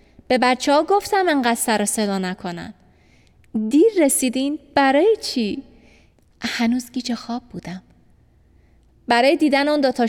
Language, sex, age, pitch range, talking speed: Persian, female, 20-39, 200-255 Hz, 125 wpm